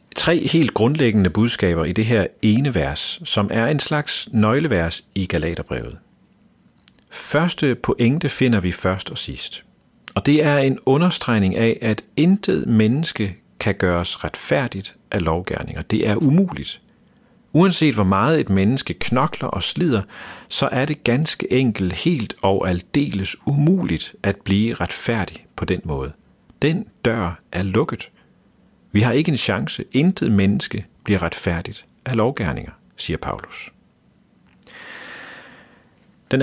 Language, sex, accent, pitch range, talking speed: Danish, male, native, 95-140 Hz, 135 wpm